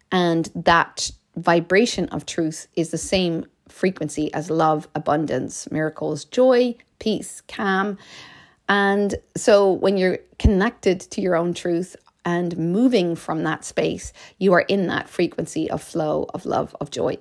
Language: English